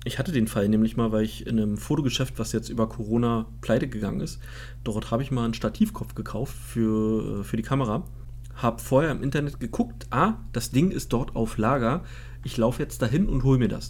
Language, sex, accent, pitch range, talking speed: German, male, German, 110-130 Hz, 210 wpm